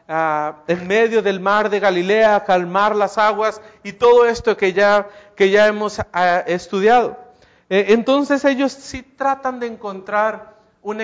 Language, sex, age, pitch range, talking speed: Spanish, male, 40-59, 195-240 Hz, 160 wpm